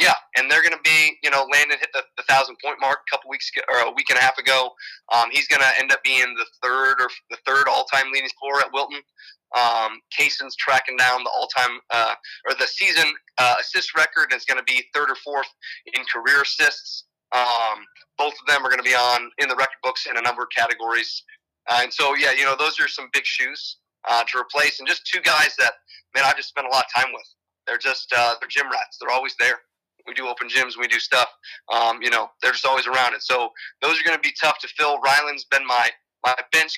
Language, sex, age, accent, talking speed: English, male, 30-49, American, 245 wpm